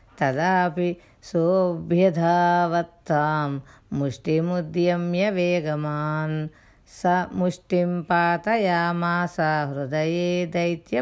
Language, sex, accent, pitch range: Telugu, female, native, 160-185 Hz